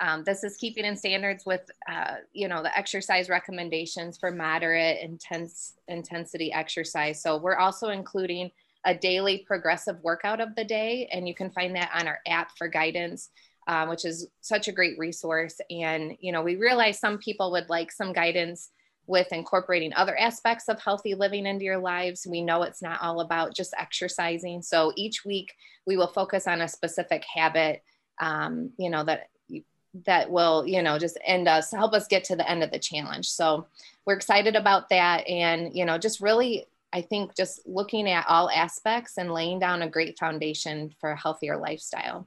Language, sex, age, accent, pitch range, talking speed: English, female, 20-39, American, 165-200 Hz, 185 wpm